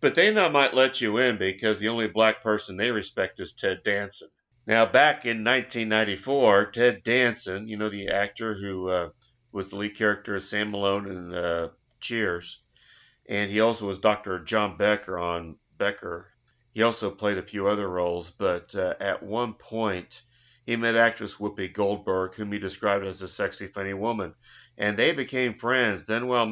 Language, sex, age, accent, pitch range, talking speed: English, male, 50-69, American, 100-115 Hz, 175 wpm